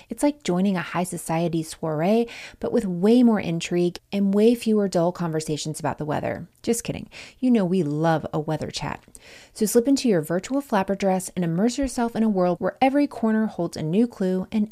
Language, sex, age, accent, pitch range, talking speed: English, female, 30-49, American, 175-235 Hz, 205 wpm